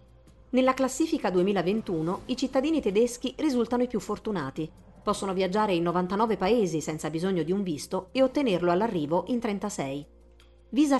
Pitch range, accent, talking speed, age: 175-235 Hz, native, 140 wpm, 40-59